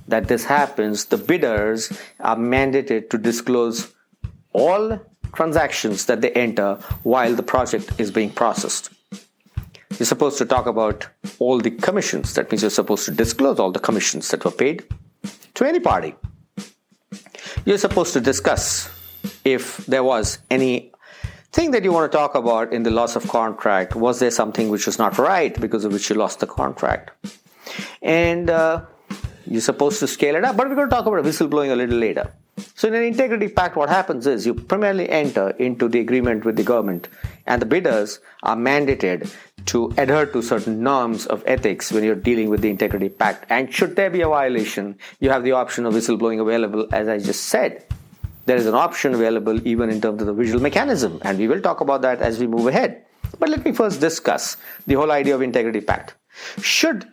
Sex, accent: male, Indian